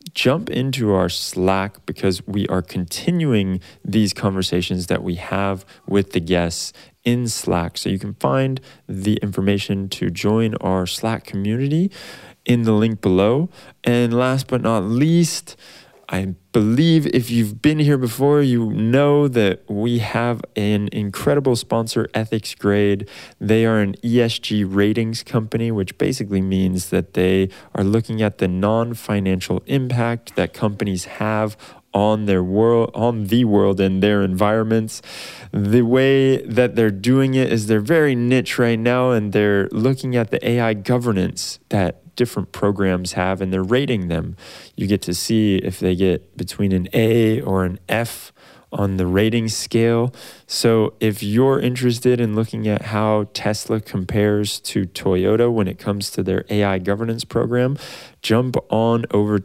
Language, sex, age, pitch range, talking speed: English, male, 20-39, 95-120 Hz, 150 wpm